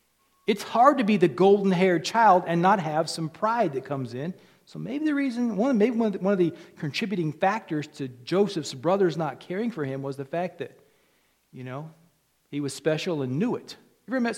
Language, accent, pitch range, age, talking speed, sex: English, American, 140-190 Hz, 40-59, 195 wpm, male